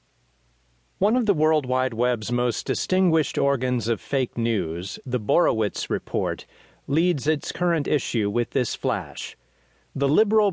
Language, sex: English, male